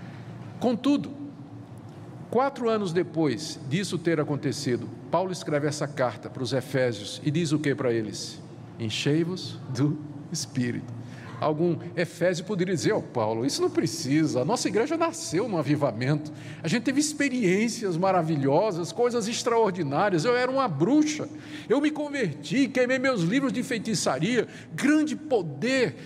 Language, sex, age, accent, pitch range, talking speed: Portuguese, male, 50-69, Brazilian, 140-205 Hz, 135 wpm